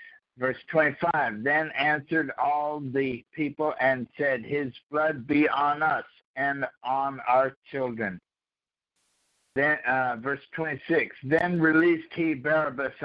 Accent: American